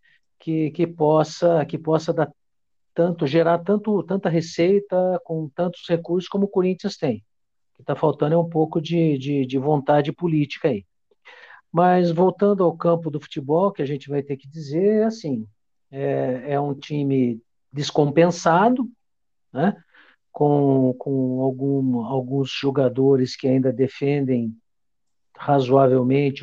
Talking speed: 135 wpm